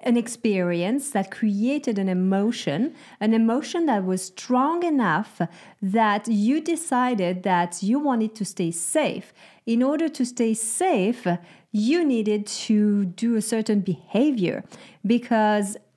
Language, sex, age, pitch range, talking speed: English, female, 40-59, 210-255 Hz, 130 wpm